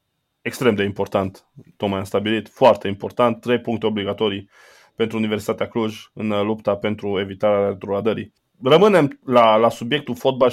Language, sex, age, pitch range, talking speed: Romanian, male, 20-39, 100-120 Hz, 135 wpm